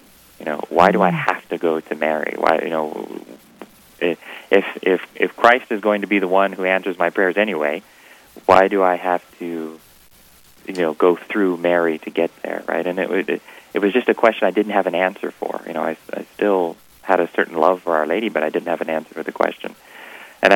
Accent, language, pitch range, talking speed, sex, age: American, English, 80-95 Hz, 230 wpm, male, 30-49